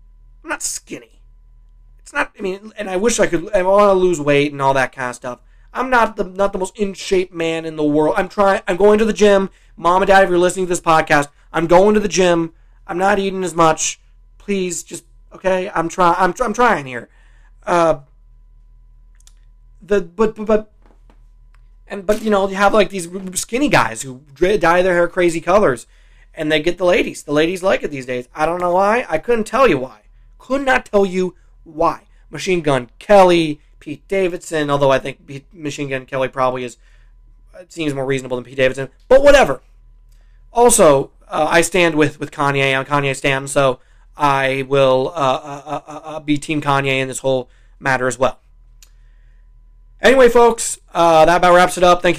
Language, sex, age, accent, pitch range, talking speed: English, male, 30-49, American, 130-185 Hz, 200 wpm